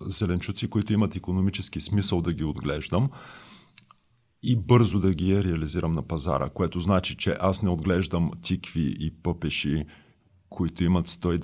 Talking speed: 140 wpm